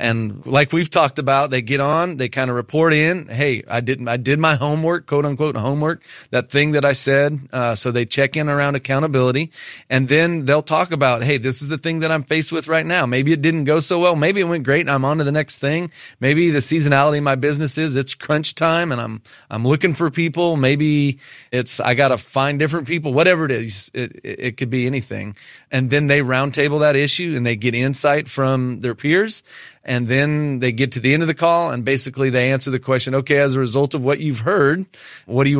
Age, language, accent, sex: 30-49, English, American, male